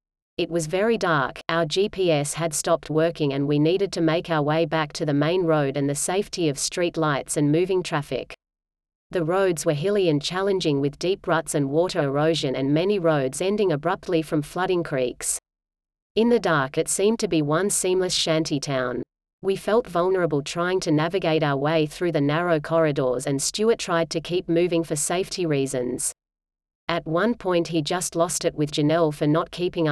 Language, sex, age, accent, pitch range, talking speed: English, female, 40-59, Australian, 150-180 Hz, 190 wpm